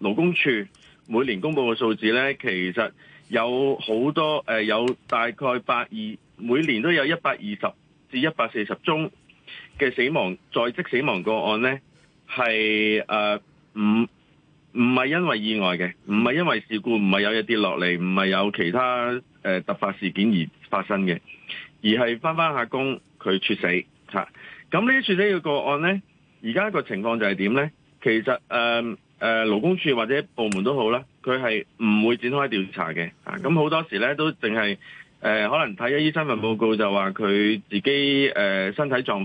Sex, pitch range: male, 110-150 Hz